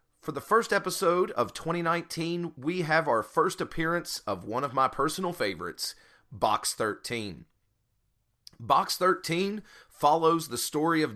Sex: male